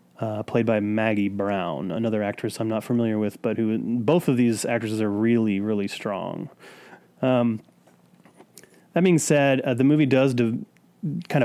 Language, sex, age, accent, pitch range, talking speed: English, male, 30-49, American, 110-130 Hz, 160 wpm